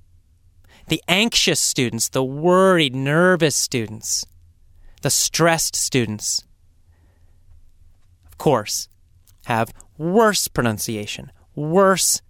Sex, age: male, 30-49